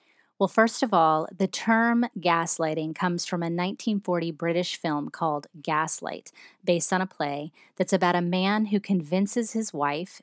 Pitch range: 165-205 Hz